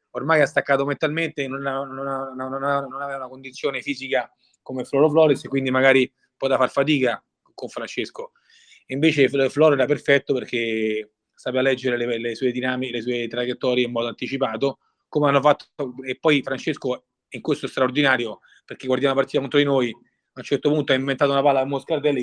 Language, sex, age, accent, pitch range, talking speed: Italian, male, 30-49, native, 130-145 Hz, 175 wpm